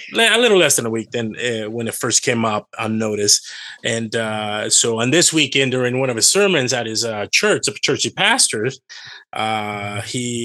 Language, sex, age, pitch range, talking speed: English, male, 30-49, 110-150 Hz, 195 wpm